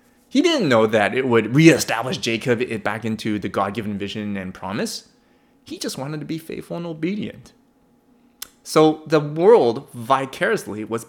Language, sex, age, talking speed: English, male, 20-39, 150 wpm